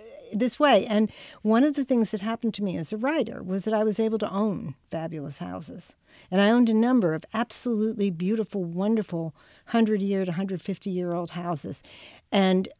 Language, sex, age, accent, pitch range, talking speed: English, female, 60-79, American, 185-235 Hz, 175 wpm